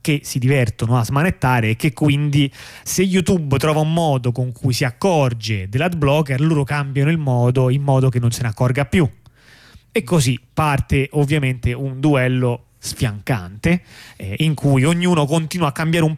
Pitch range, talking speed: 120-155 Hz, 165 wpm